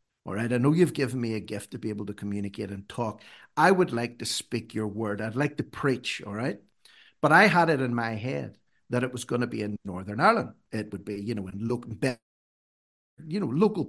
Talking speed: 230 wpm